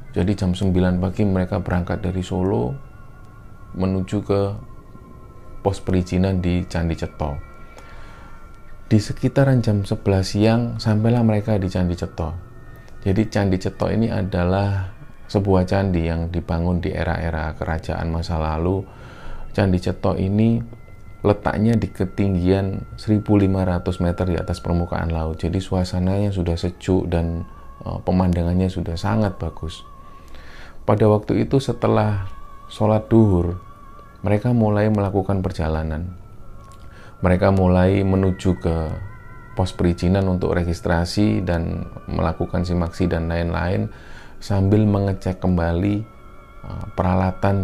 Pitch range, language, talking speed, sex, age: 90-105 Hz, Indonesian, 110 wpm, male, 30-49